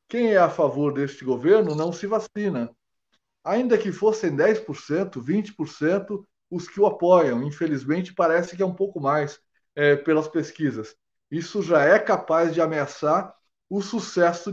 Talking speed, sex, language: 145 wpm, male, Portuguese